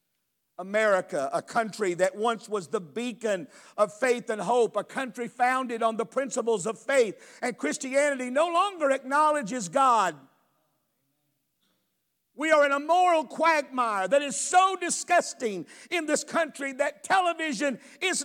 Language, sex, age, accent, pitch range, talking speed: English, male, 50-69, American, 230-305 Hz, 140 wpm